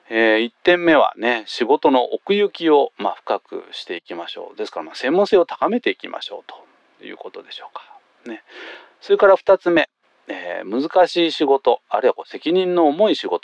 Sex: male